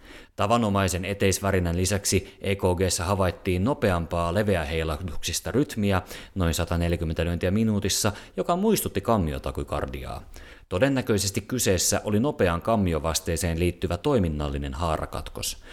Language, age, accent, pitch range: Finnish, 30-49, native, 85-100 Hz